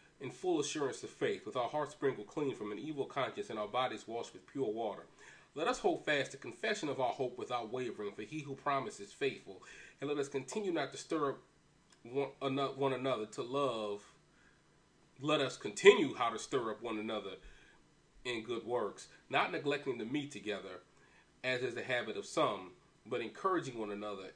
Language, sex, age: English, male, 30-49